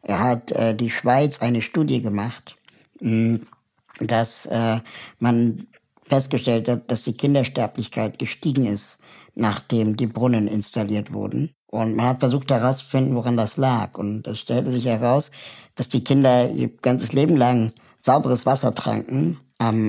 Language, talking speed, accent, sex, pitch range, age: German, 140 wpm, German, male, 115-135 Hz, 10-29